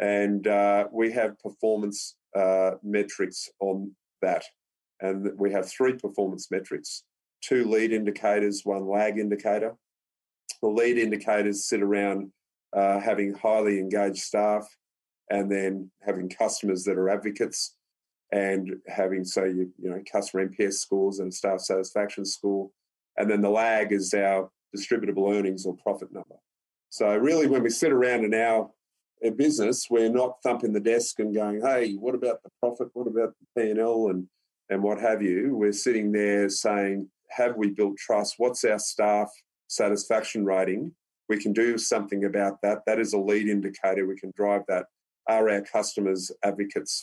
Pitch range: 95-110 Hz